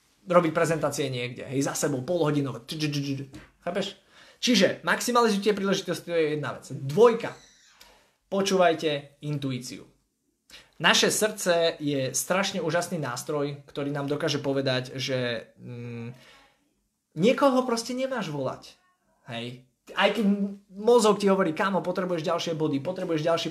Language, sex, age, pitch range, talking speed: Slovak, male, 20-39, 140-200 Hz, 120 wpm